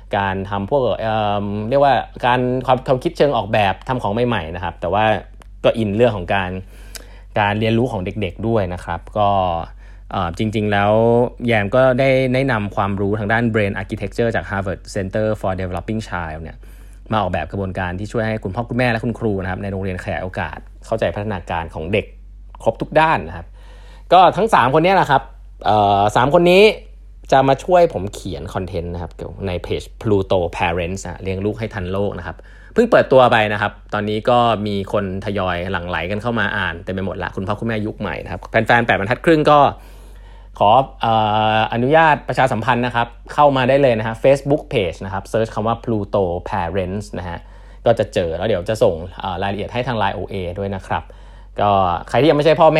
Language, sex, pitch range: Thai, male, 95-120 Hz